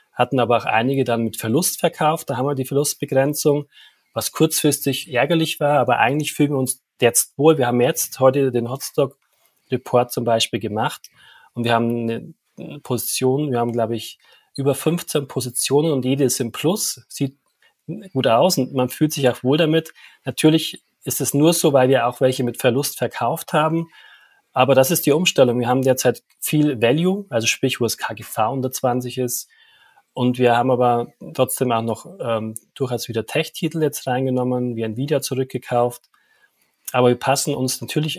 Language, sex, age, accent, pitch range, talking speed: German, male, 30-49, German, 125-150 Hz, 180 wpm